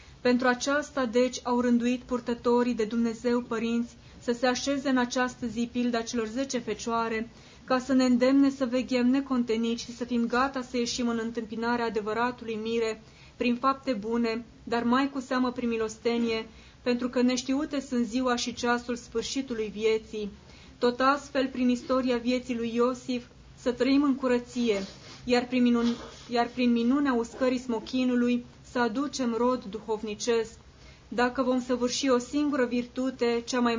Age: 20-39